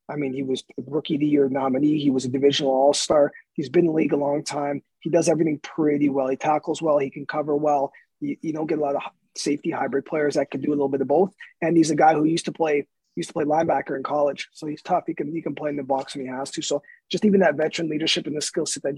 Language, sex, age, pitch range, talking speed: English, male, 20-39, 150-195 Hz, 295 wpm